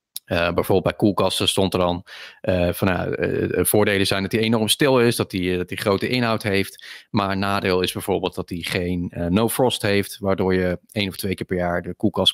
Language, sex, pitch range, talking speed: Dutch, male, 95-110 Hz, 215 wpm